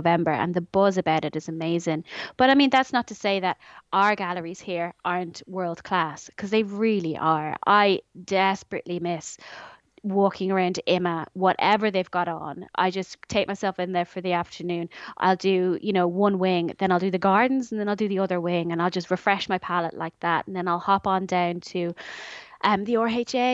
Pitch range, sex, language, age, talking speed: 180-215 Hz, female, English, 20-39, 205 wpm